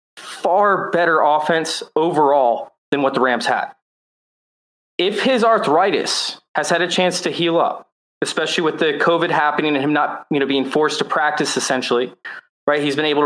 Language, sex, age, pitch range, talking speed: English, male, 20-39, 135-185 Hz, 170 wpm